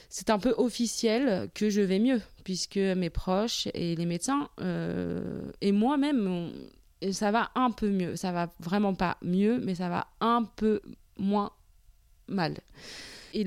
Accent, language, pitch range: French, French, 180-235 Hz